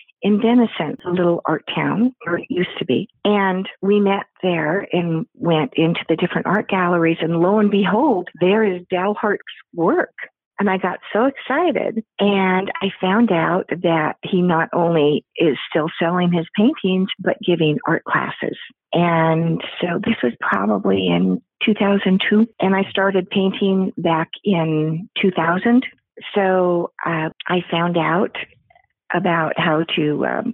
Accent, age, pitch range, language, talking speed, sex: American, 50-69, 165-195 Hz, English, 145 wpm, female